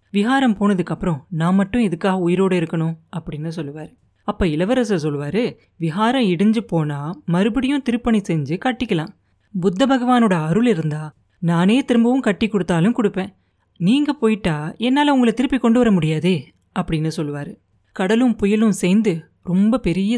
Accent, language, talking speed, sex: native, Tamil, 130 wpm, female